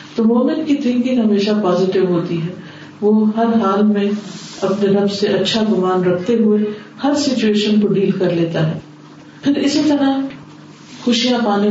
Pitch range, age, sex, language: 180-215 Hz, 40-59, female, Urdu